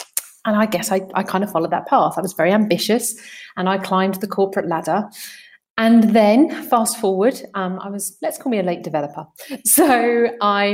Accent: British